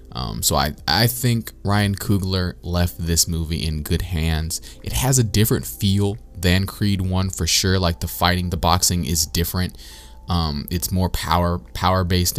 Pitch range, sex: 75-95 Hz, male